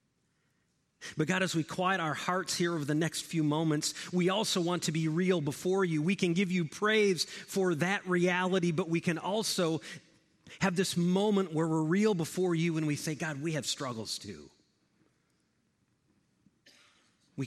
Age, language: 40-59, English